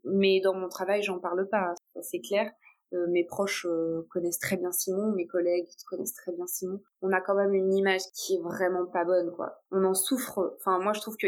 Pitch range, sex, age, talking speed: 195-245 Hz, female, 20-39, 230 wpm